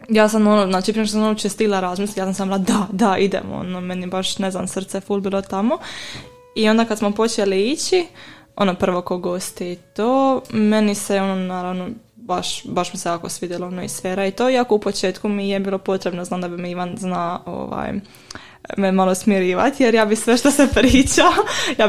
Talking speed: 210 wpm